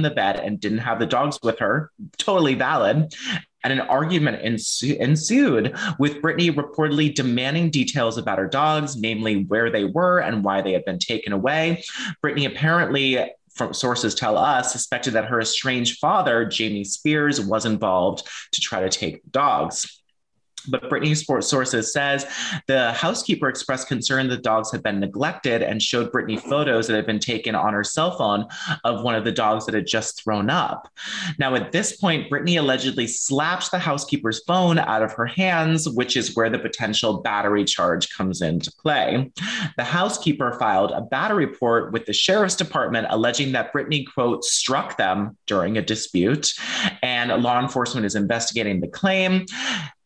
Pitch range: 110-150 Hz